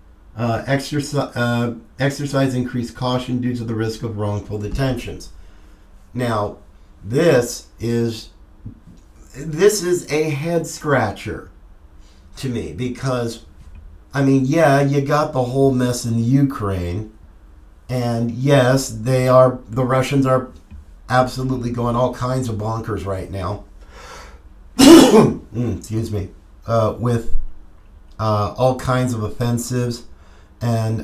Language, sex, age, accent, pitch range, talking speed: English, male, 50-69, American, 90-125 Hz, 115 wpm